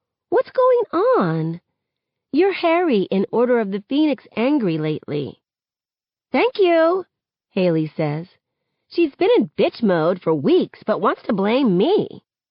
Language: English